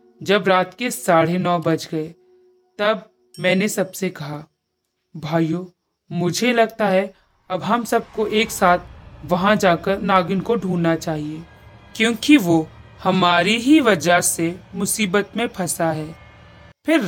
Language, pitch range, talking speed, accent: Hindi, 175-270 Hz, 130 wpm, native